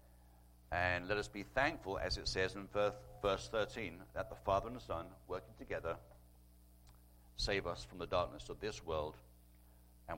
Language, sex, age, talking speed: English, male, 60-79, 165 wpm